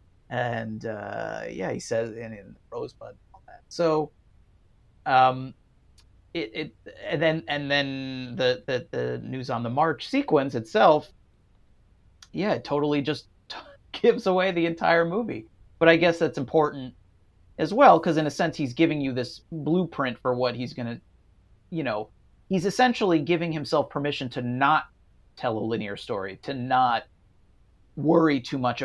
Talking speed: 150 wpm